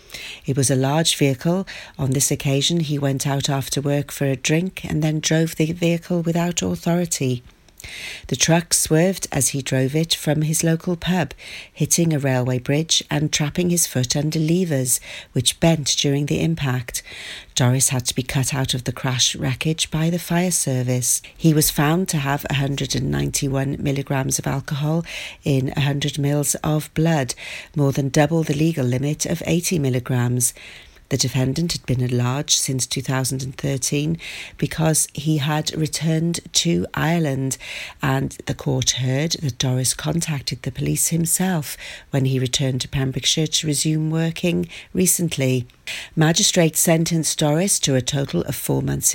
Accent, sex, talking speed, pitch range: British, female, 160 wpm, 135-165 Hz